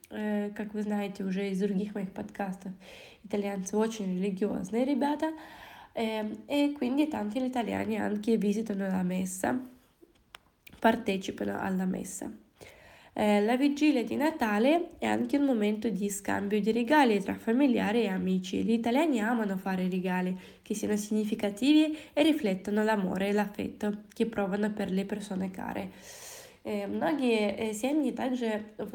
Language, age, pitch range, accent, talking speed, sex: Italian, 20-39, 205-250 Hz, native, 110 wpm, female